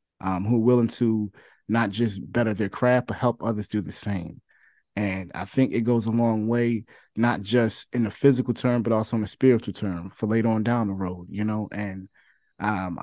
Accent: American